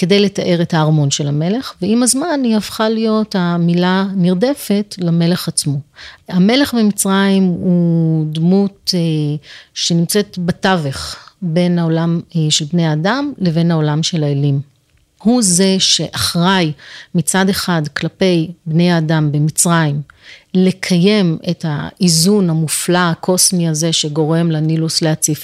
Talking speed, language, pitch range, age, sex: 115 wpm, Hebrew, 155-190 Hz, 30-49, female